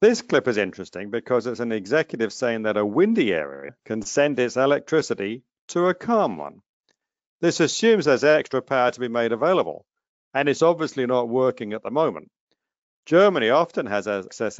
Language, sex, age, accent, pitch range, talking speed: English, male, 50-69, British, 115-160 Hz, 175 wpm